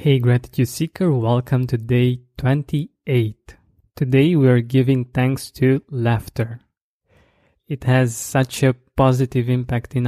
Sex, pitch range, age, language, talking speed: male, 120-135 Hz, 20-39, English, 125 wpm